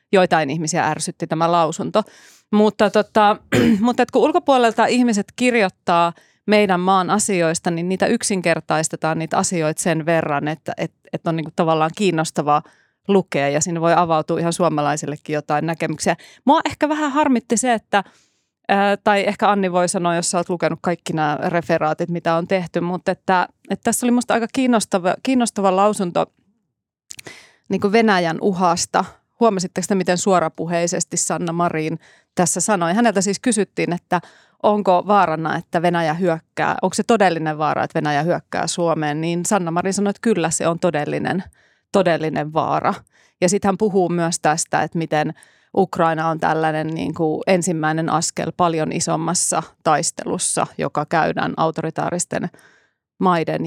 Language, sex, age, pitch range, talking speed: Finnish, female, 30-49, 165-200 Hz, 145 wpm